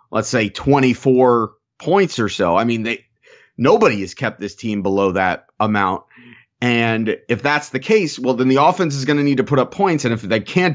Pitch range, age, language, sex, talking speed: 120-170 Hz, 30-49, English, male, 210 wpm